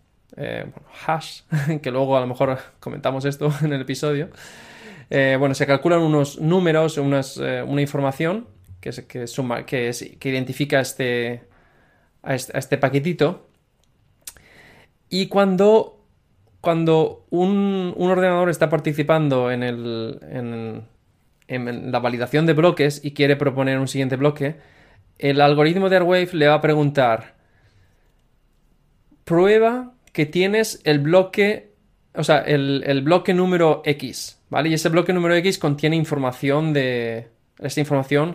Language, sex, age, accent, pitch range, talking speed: Spanish, male, 20-39, Spanish, 130-160 Hz, 140 wpm